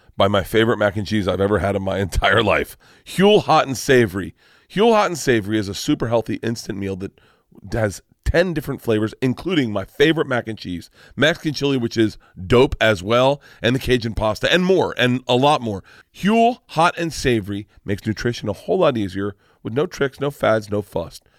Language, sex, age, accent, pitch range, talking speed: English, male, 40-59, American, 110-140 Hz, 200 wpm